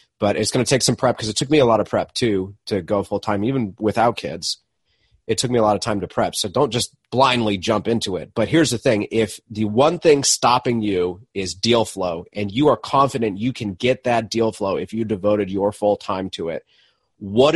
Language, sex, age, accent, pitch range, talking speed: English, male, 30-49, American, 100-125 Hz, 235 wpm